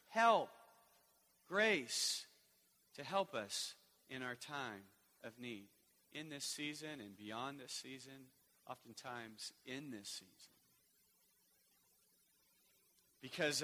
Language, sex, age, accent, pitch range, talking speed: English, male, 40-59, American, 105-135 Hz, 95 wpm